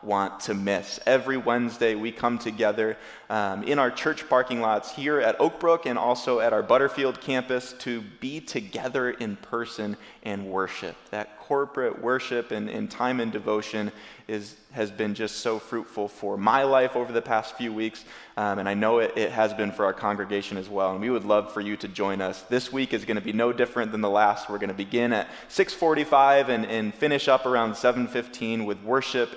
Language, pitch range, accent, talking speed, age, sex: English, 100-125 Hz, American, 200 wpm, 20-39, male